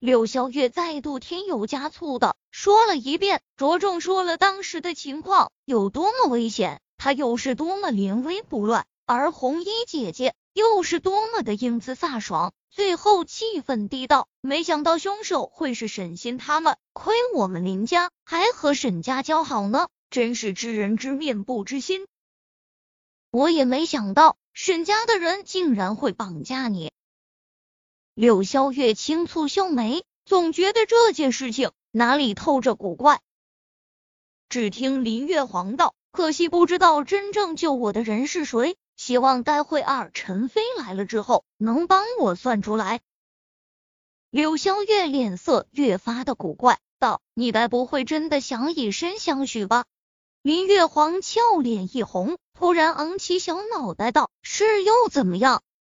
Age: 20-39